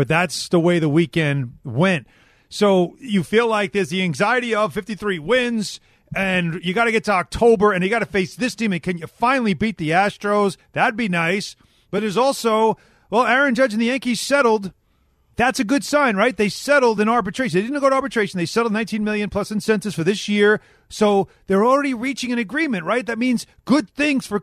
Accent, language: American, English